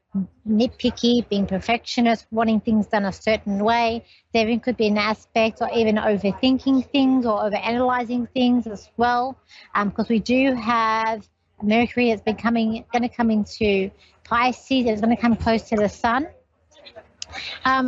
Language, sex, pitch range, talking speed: English, female, 220-255 Hz, 155 wpm